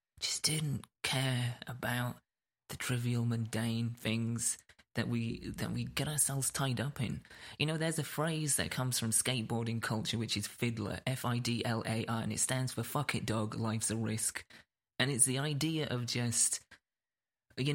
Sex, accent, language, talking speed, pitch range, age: male, British, English, 160 wpm, 115-130 Hz, 20-39